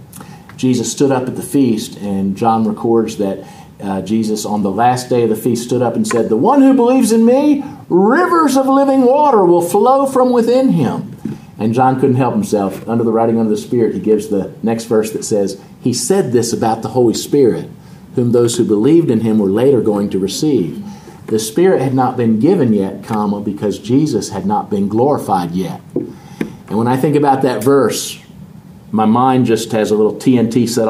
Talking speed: 200 wpm